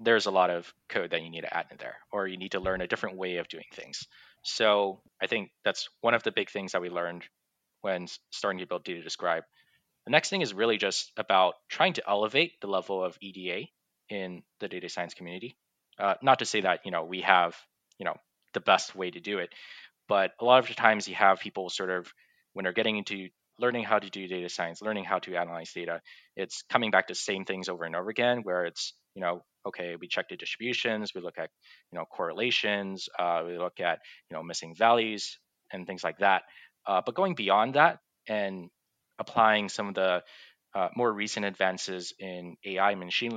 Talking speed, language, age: 215 wpm, English, 20-39